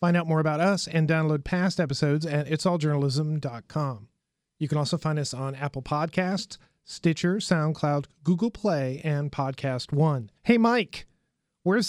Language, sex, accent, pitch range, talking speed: English, male, American, 145-175 Hz, 145 wpm